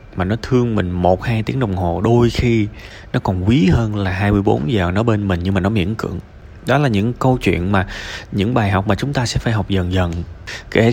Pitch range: 95-120 Hz